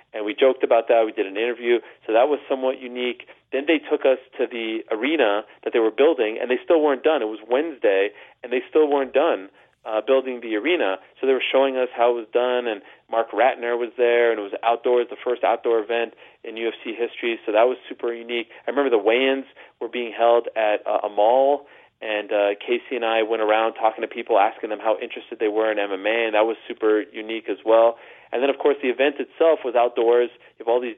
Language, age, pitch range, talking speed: English, 30-49, 110-135 Hz, 235 wpm